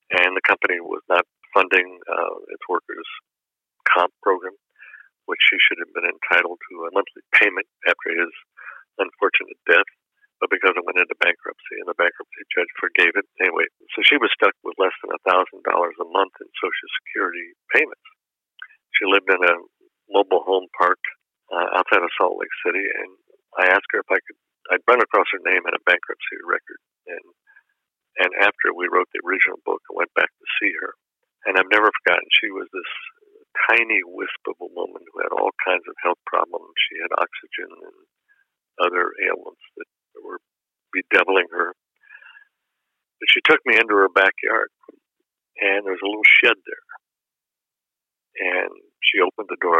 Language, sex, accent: English, male, American